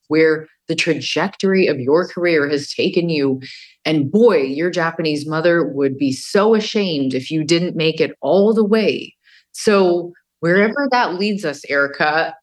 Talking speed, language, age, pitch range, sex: 155 wpm, English, 30-49, 135-175 Hz, female